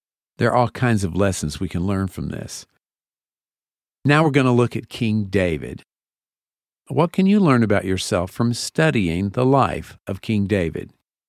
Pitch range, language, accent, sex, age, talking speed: 100-140 Hz, English, American, male, 50-69, 170 wpm